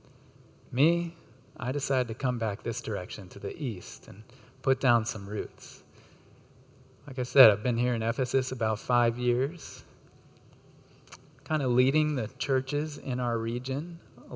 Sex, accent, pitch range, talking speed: male, American, 115-135 Hz, 150 wpm